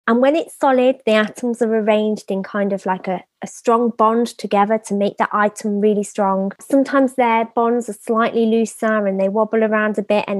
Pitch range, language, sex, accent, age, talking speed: 200-235 Hz, English, female, British, 20-39, 210 wpm